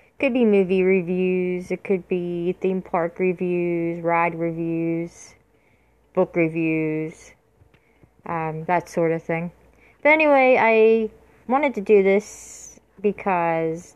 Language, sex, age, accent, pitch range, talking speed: English, female, 30-49, American, 170-220 Hz, 115 wpm